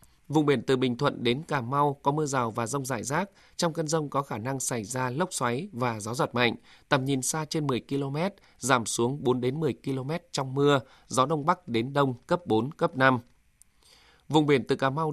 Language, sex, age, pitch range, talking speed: Vietnamese, male, 20-39, 125-155 Hz, 220 wpm